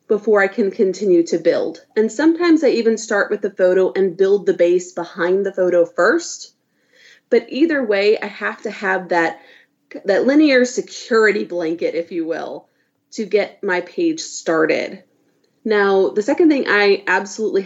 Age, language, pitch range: 30-49, English, 190-260 Hz